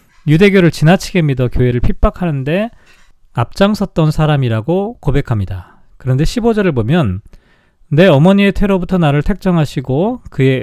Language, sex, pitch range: Korean, male, 130-185 Hz